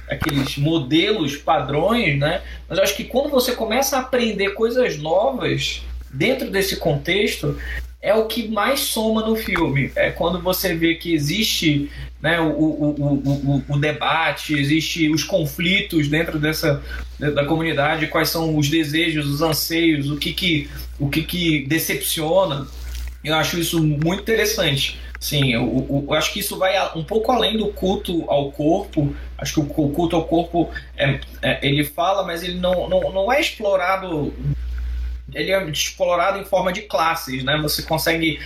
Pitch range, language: 145-190 Hz, Portuguese